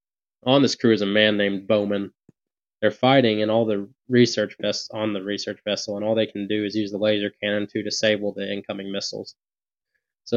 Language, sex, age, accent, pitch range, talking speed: English, male, 20-39, American, 105-115 Hz, 205 wpm